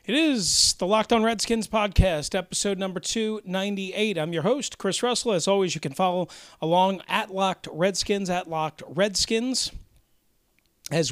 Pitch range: 140-190 Hz